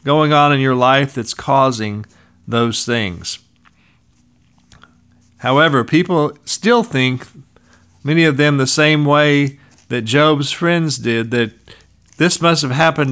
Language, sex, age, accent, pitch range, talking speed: English, male, 50-69, American, 115-155 Hz, 130 wpm